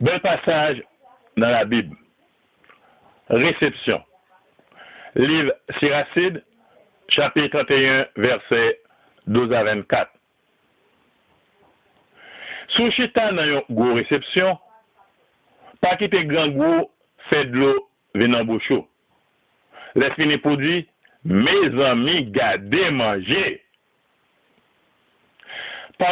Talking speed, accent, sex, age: 80 wpm, French, male, 60-79